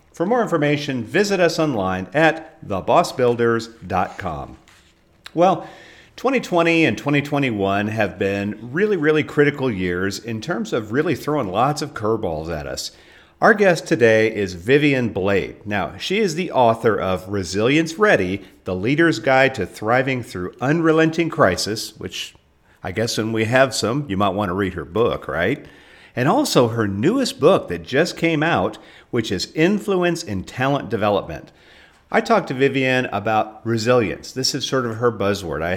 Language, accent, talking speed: English, American, 155 wpm